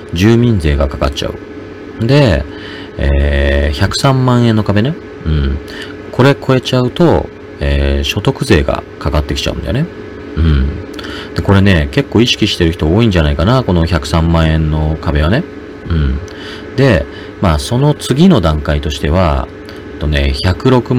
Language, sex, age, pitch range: Japanese, male, 40-59, 75-115 Hz